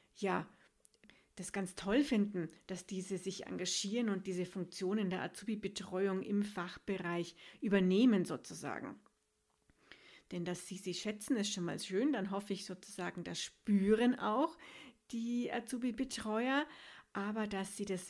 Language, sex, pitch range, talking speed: German, female, 190-260 Hz, 135 wpm